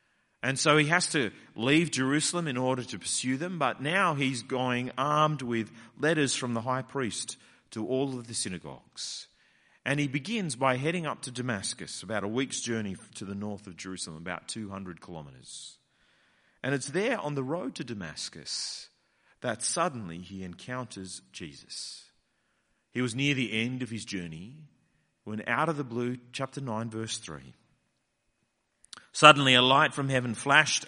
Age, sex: 40-59, male